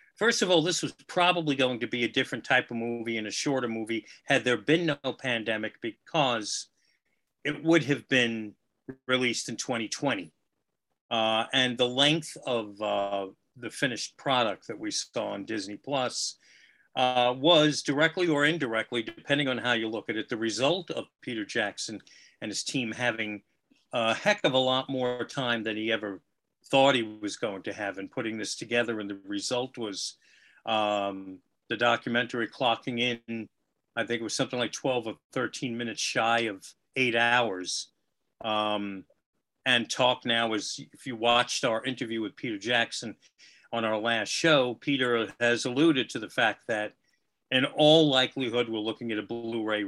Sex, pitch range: male, 110-130 Hz